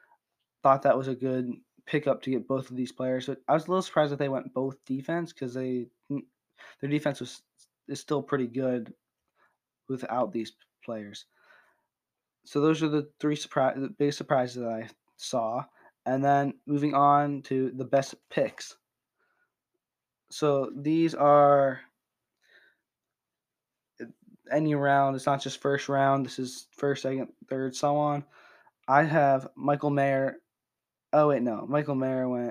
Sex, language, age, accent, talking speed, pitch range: male, English, 20-39, American, 155 wpm, 130-145 Hz